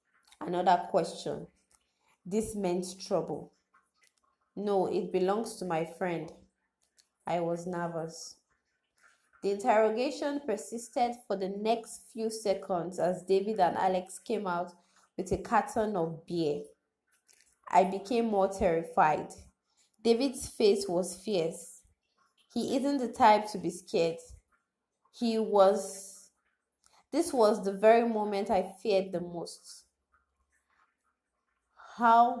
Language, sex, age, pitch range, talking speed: English, female, 20-39, 170-205 Hz, 110 wpm